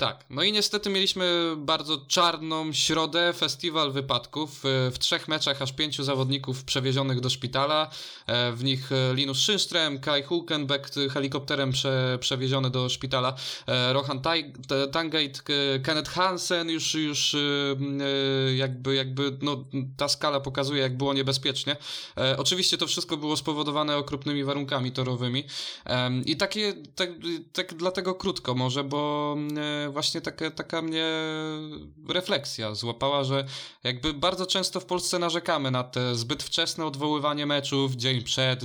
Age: 20-39